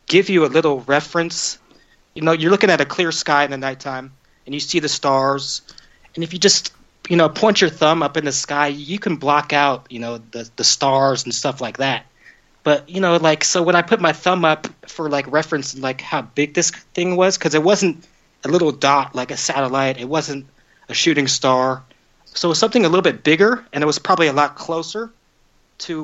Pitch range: 135-170 Hz